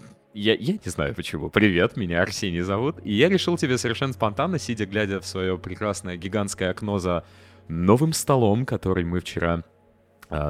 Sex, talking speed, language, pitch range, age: male, 165 wpm, Russian, 85-120 Hz, 20-39